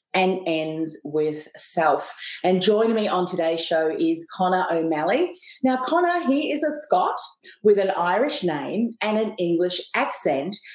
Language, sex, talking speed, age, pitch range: English, female, 150 wpm, 30-49, 165-235 Hz